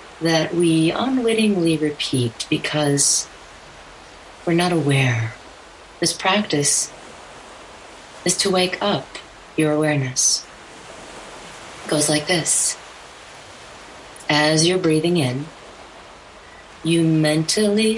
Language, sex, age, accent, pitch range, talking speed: English, female, 40-59, American, 135-165 Hz, 85 wpm